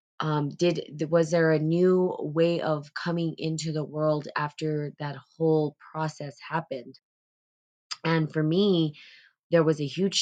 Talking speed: 140 wpm